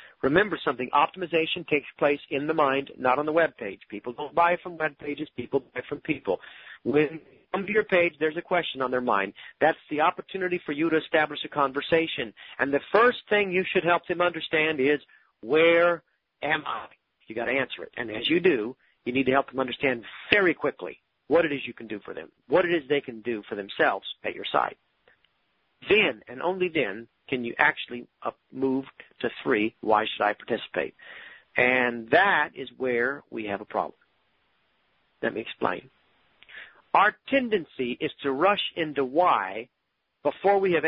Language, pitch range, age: English, 135-185 Hz, 40-59